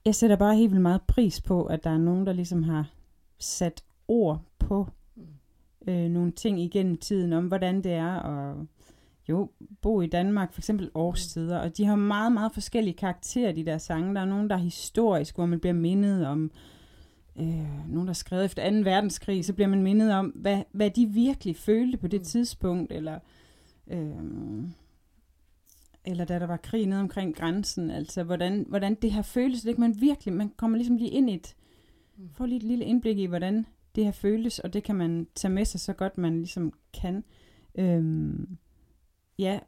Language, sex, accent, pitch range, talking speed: Danish, female, native, 165-210 Hz, 190 wpm